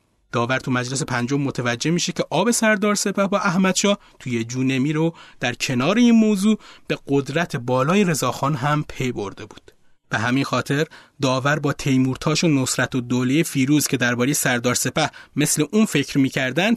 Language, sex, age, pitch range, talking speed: Persian, male, 30-49, 125-165 Hz, 160 wpm